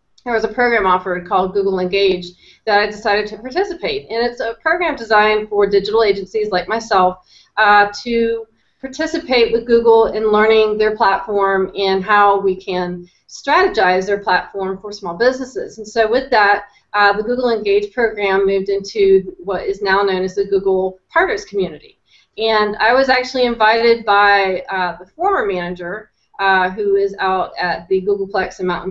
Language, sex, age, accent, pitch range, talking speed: English, female, 30-49, American, 190-225 Hz, 170 wpm